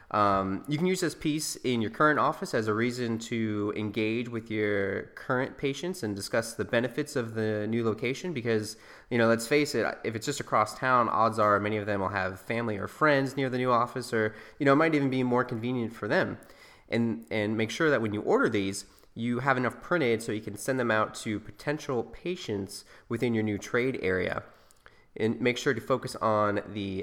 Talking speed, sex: 215 wpm, male